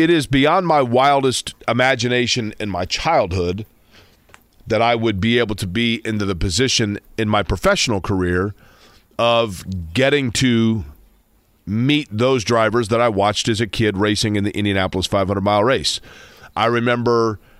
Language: English